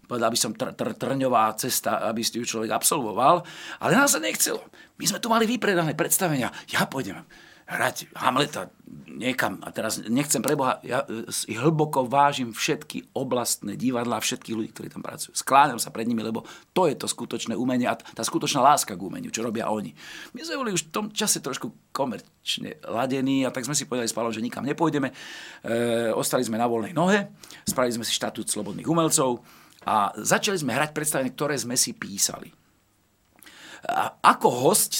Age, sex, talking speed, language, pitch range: 50-69, male, 175 wpm, Slovak, 115-150 Hz